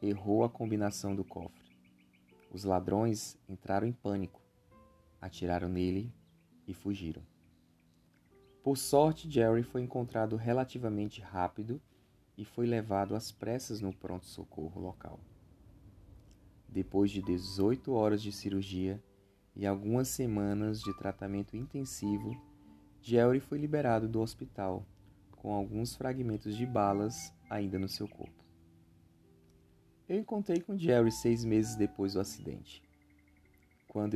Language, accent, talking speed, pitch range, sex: Portuguese, Brazilian, 115 wpm, 95-115 Hz, male